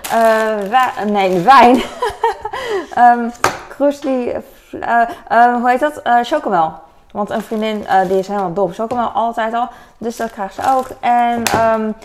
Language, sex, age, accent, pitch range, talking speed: Dutch, female, 20-39, Dutch, 195-245 Hz, 155 wpm